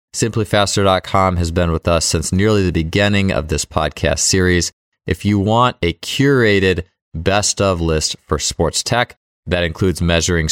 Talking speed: 150 wpm